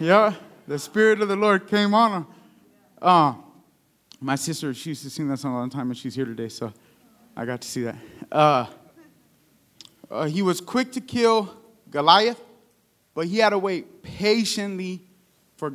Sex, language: male, English